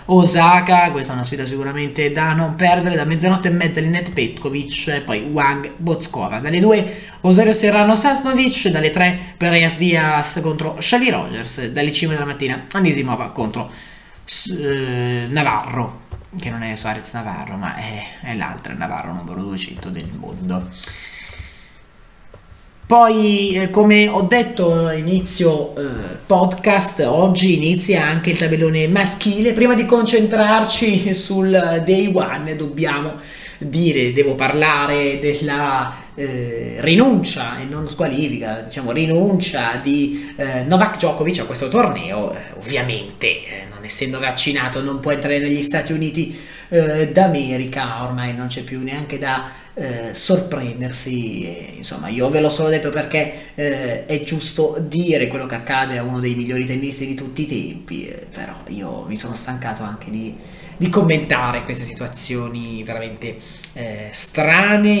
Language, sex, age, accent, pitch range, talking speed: Italian, male, 20-39, native, 130-180 Hz, 140 wpm